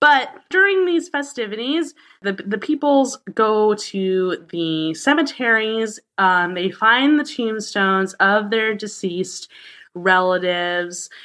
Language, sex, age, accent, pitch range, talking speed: English, female, 20-39, American, 180-235 Hz, 105 wpm